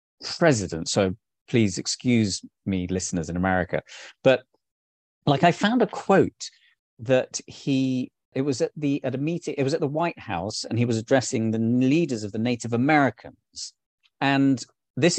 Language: English